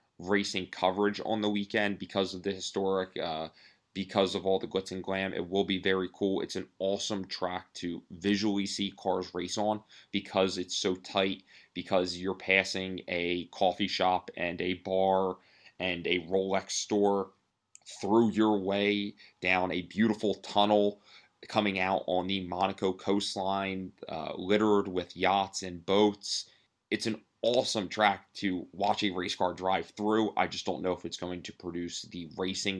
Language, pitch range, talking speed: English, 90-100 Hz, 165 wpm